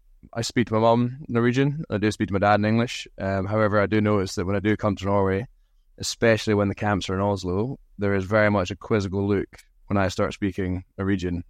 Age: 20-39